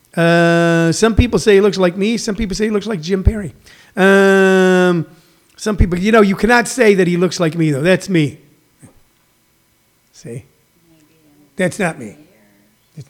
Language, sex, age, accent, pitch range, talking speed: English, male, 40-59, American, 170-215 Hz, 170 wpm